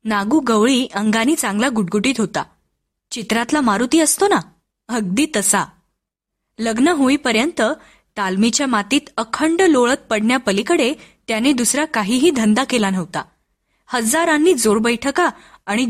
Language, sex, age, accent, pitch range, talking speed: Marathi, female, 20-39, native, 210-300 Hz, 110 wpm